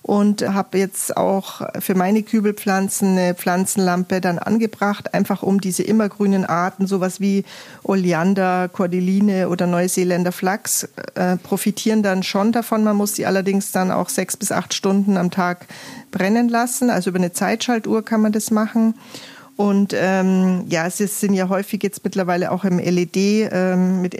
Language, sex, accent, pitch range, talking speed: German, female, German, 180-215 Hz, 160 wpm